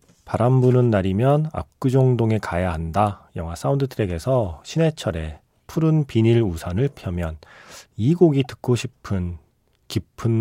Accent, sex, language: native, male, Korean